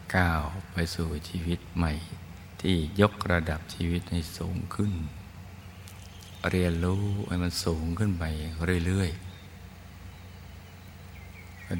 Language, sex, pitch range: Thai, male, 85-95 Hz